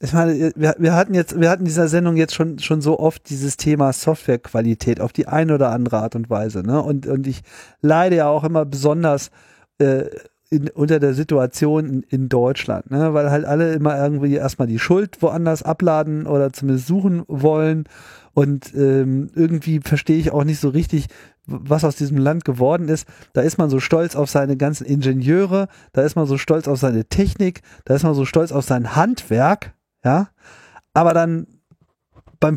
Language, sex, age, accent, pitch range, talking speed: German, male, 40-59, German, 135-165 Hz, 185 wpm